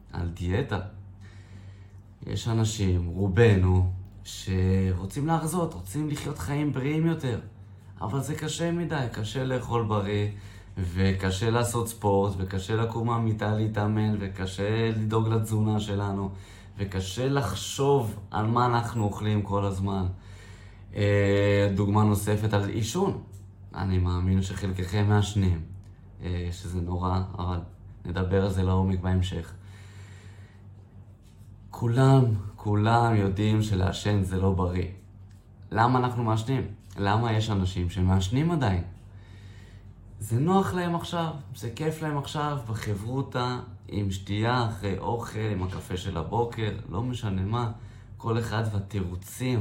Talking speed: 110 wpm